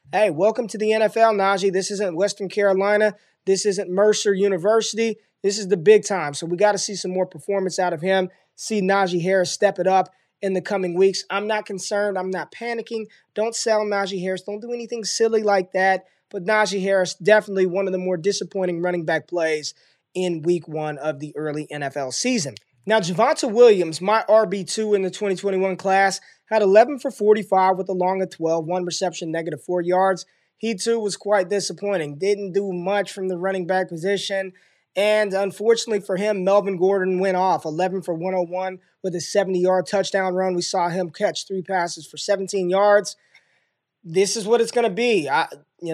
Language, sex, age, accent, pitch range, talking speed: English, male, 20-39, American, 185-210 Hz, 190 wpm